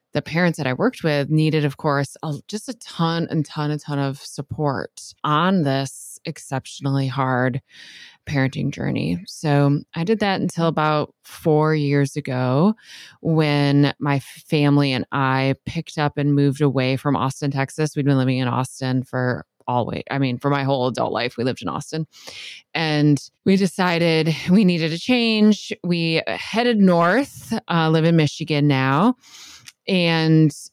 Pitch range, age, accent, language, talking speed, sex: 140-170 Hz, 20-39, American, English, 160 wpm, female